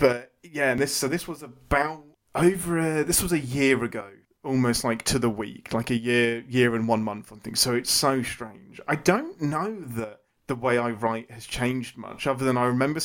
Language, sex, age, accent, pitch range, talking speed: English, male, 30-49, British, 115-140 Hz, 220 wpm